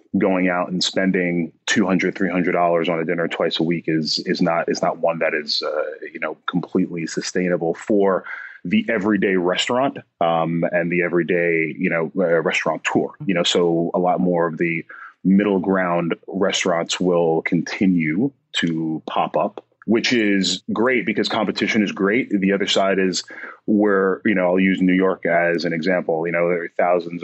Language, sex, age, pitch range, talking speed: English, male, 30-49, 85-105 Hz, 175 wpm